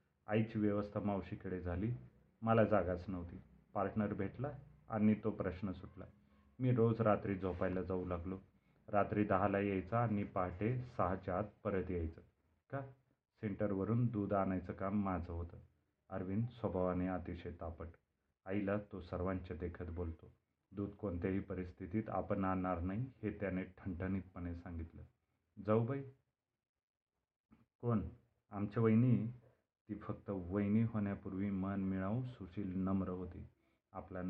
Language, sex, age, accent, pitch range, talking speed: Marathi, male, 30-49, native, 90-105 Hz, 120 wpm